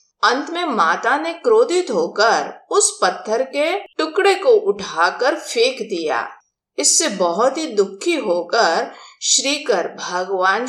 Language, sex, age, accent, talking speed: Hindi, female, 50-69, native, 120 wpm